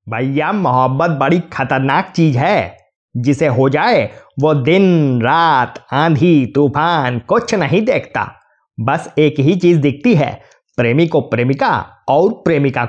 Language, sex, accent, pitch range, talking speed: Hindi, male, native, 130-170 Hz, 130 wpm